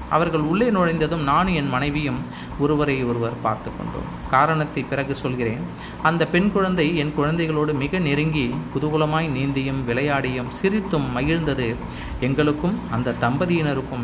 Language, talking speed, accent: Tamil, 120 wpm, native